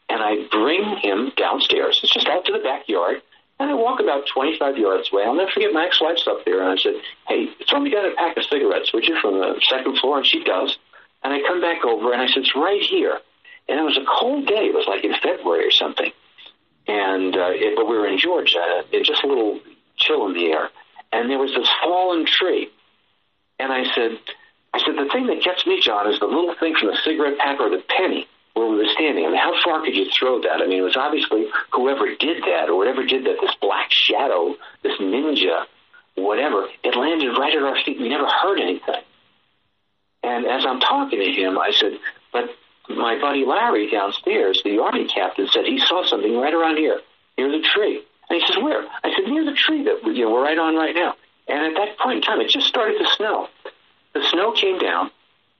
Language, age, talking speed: English, 60-79, 230 wpm